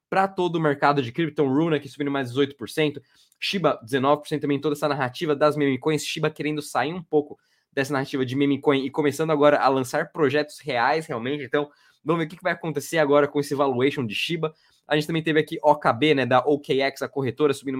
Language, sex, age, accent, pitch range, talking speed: Portuguese, male, 20-39, Brazilian, 130-150 Hz, 210 wpm